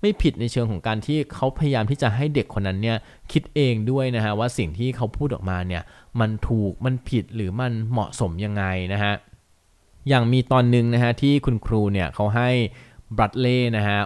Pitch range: 95-125 Hz